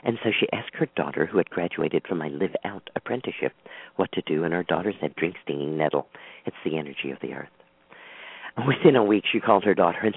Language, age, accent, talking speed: English, 50-69, American, 220 wpm